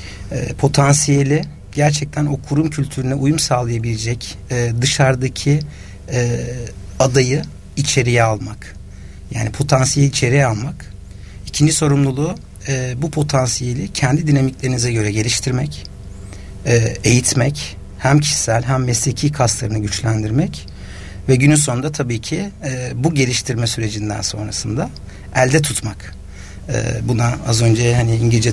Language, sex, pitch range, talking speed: Turkish, male, 110-140 Hz, 95 wpm